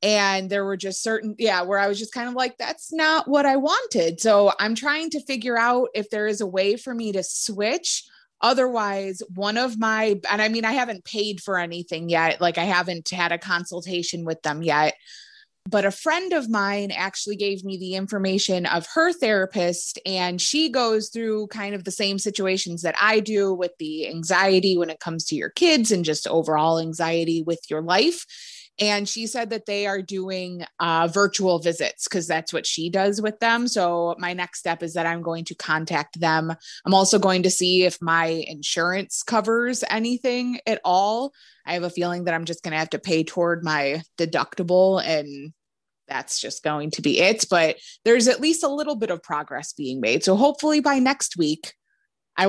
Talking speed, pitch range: 200 wpm, 170-220 Hz